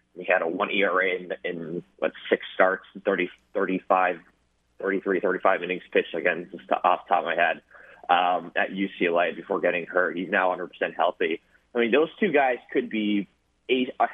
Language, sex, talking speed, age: English, male, 170 wpm, 30-49